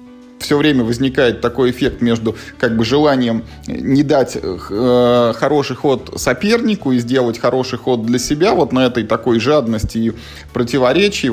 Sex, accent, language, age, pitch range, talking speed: male, native, Russian, 20-39, 115-145 Hz, 150 wpm